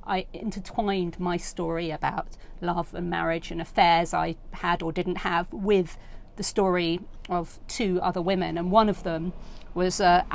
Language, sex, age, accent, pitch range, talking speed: English, female, 40-59, British, 175-215 Hz, 160 wpm